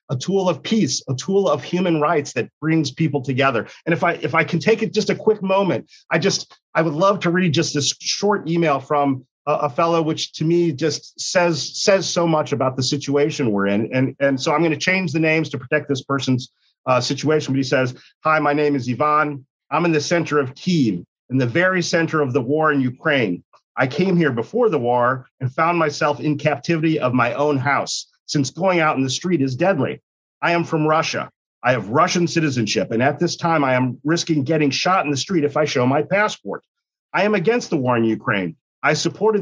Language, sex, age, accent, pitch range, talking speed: English, male, 40-59, American, 130-170 Hz, 225 wpm